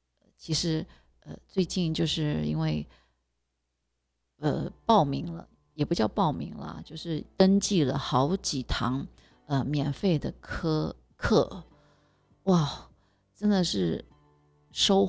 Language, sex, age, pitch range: Chinese, female, 30-49, 125-180 Hz